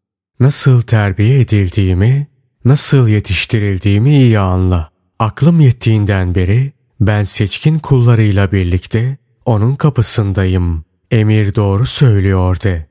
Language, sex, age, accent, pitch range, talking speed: Turkish, male, 30-49, native, 95-125 Hz, 90 wpm